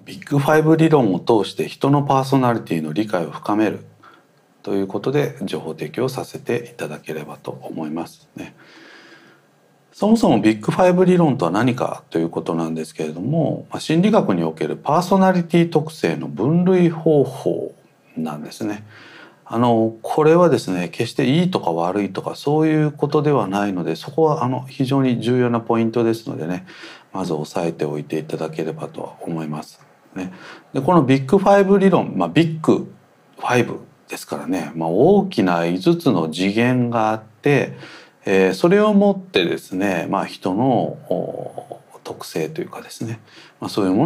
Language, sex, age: Japanese, male, 40-59